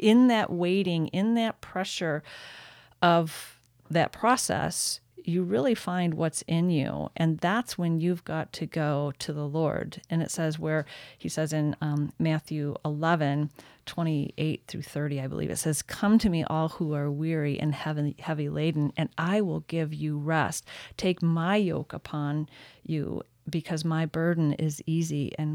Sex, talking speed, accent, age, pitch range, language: female, 160 wpm, American, 40-59, 155-190 Hz, English